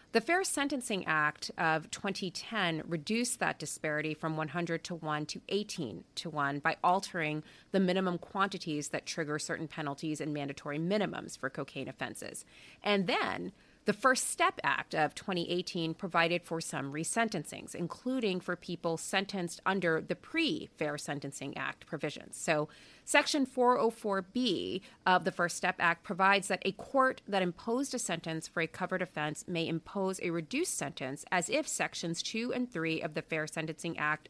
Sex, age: female, 30-49